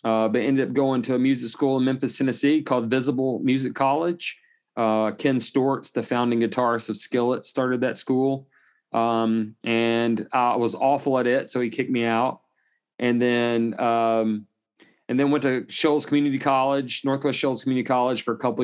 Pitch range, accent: 110-130 Hz, American